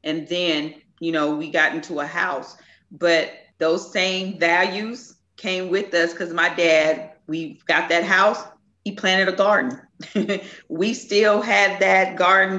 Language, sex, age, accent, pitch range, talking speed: English, female, 40-59, American, 170-200 Hz, 155 wpm